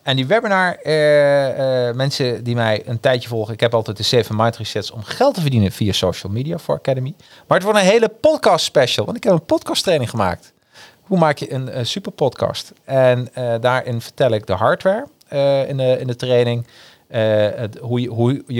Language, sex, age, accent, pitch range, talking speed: Dutch, male, 40-59, Dutch, 115-145 Hz, 205 wpm